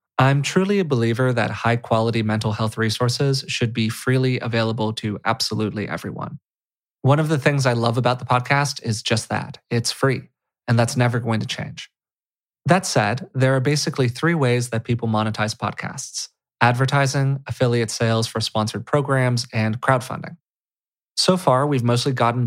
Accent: American